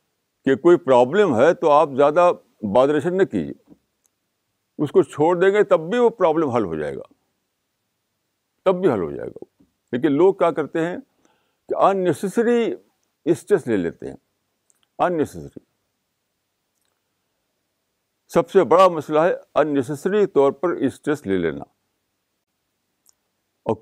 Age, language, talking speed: 60-79, Urdu, 140 wpm